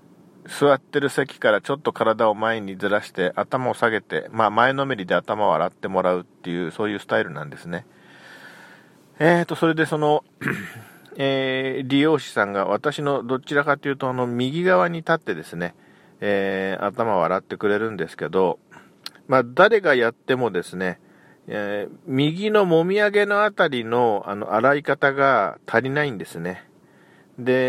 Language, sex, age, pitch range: Japanese, male, 40-59, 110-160 Hz